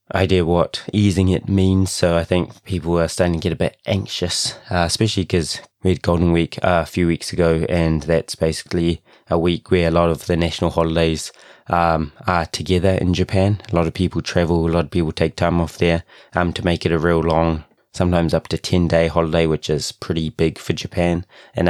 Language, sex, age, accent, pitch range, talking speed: English, male, 20-39, British, 85-95 Hz, 215 wpm